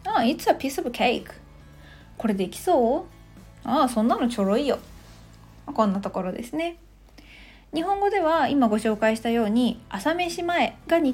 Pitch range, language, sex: 205-285 Hz, Japanese, female